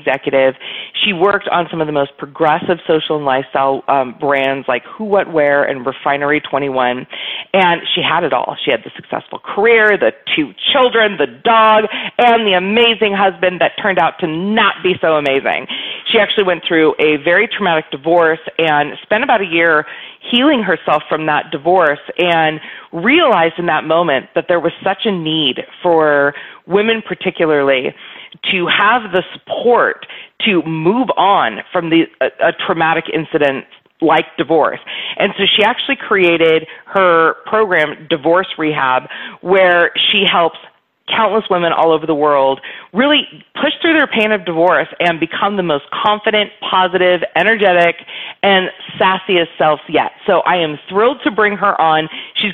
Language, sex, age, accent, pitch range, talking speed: English, female, 30-49, American, 155-210 Hz, 160 wpm